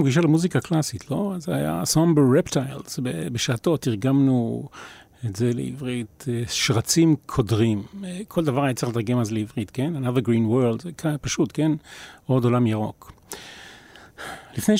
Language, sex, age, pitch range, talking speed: Hebrew, male, 40-59, 115-150 Hz, 140 wpm